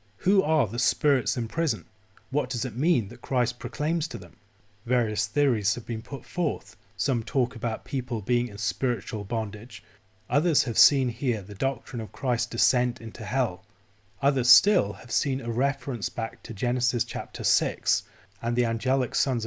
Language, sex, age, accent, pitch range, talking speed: English, male, 30-49, British, 110-130 Hz, 170 wpm